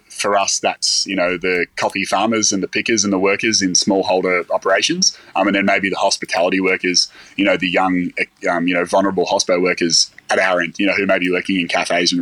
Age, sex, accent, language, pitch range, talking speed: 20-39, male, Australian, English, 90-100 Hz, 225 wpm